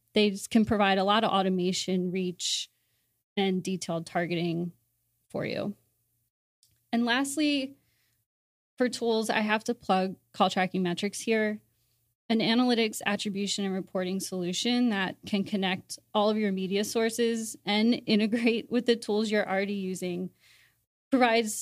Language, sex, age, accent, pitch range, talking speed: English, female, 20-39, American, 180-220 Hz, 135 wpm